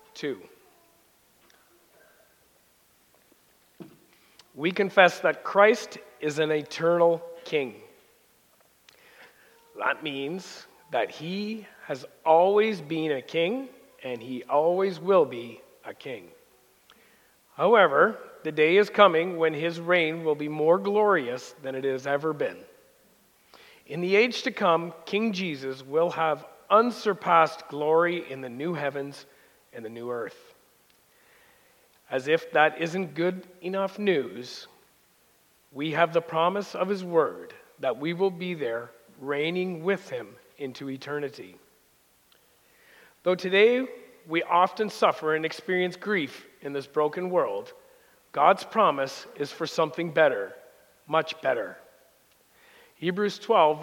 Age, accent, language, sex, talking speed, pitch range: 40-59, American, English, male, 120 wpm, 155-205 Hz